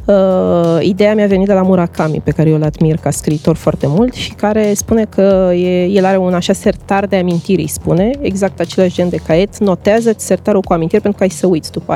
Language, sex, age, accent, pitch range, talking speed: Romanian, female, 20-39, native, 170-225 Hz, 215 wpm